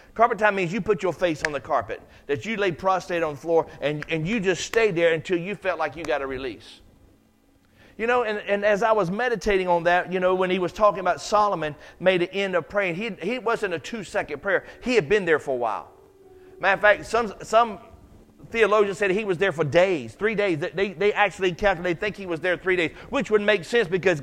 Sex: male